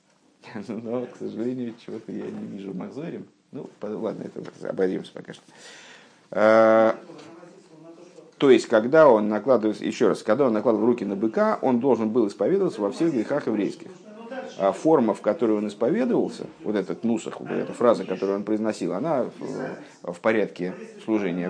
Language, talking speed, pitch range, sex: Russian, 155 wpm, 100-130 Hz, male